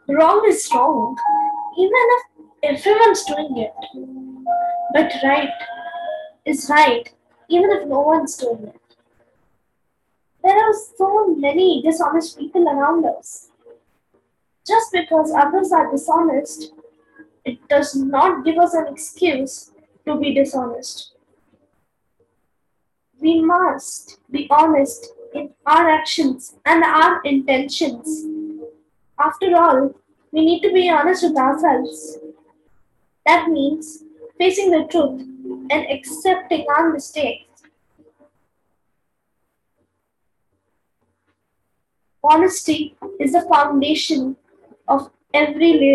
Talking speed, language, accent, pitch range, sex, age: 100 wpm, English, Indian, 275-340 Hz, female, 20-39